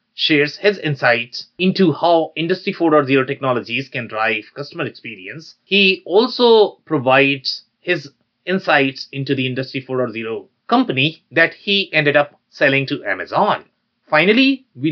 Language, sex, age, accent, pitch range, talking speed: English, male, 30-49, Indian, 130-185 Hz, 125 wpm